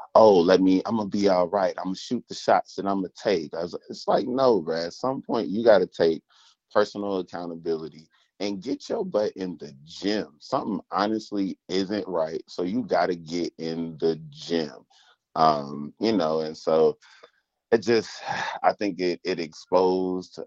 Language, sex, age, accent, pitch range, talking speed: English, male, 30-49, American, 80-100 Hz, 175 wpm